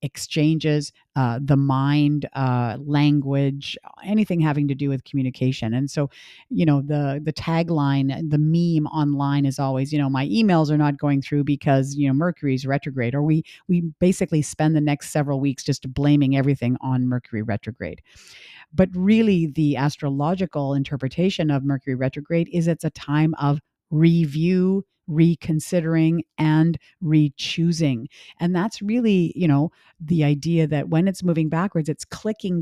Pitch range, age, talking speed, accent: 140-165 Hz, 50-69, 155 wpm, American